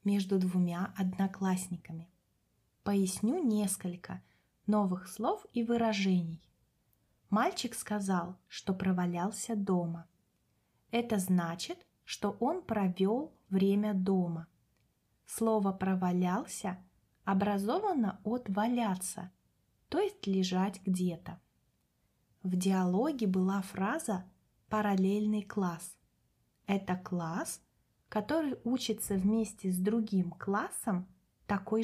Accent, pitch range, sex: native, 185-215 Hz, female